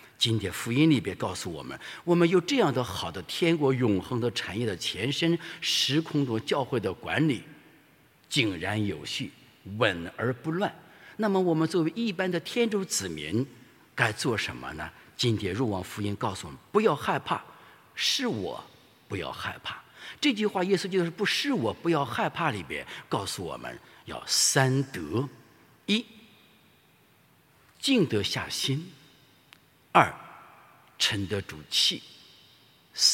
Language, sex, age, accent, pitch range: English, male, 50-69, Chinese, 115-175 Hz